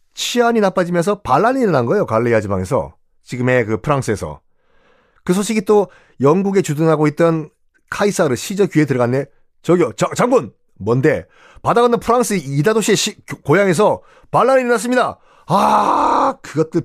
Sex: male